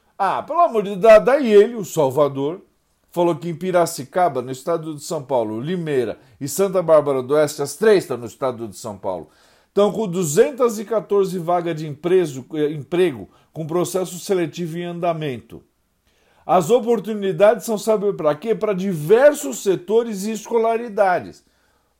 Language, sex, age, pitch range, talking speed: Portuguese, male, 50-69, 155-225 Hz, 145 wpm